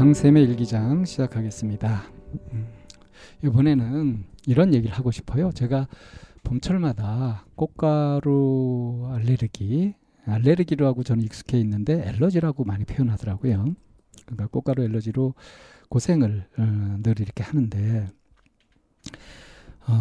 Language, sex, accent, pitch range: Korean, male, native, 110-135 Hz